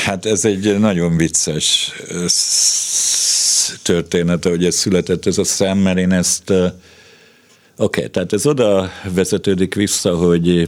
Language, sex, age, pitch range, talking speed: Hungarian, male, 50-69, 80-90 Hz, 130 wpm